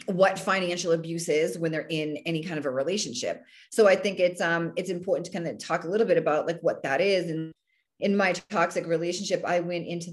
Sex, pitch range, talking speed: female, 160-195 Hz, 230 wpm